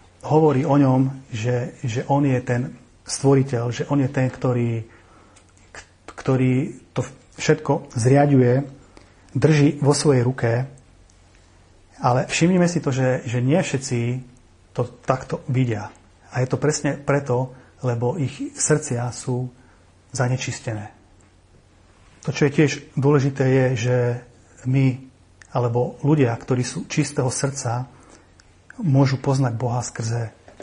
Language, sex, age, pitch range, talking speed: Slovak, male, 40-59, 115-135 Hz, 120 wpm